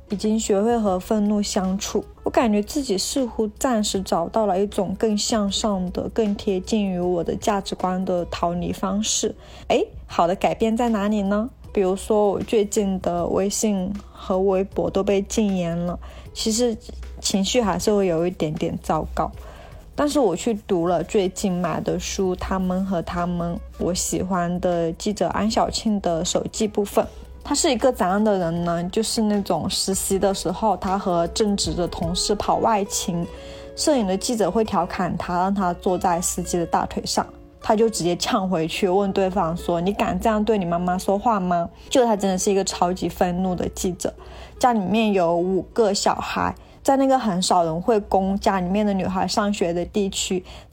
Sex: female